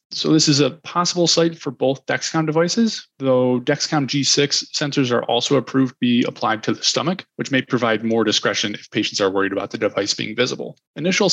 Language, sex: English, male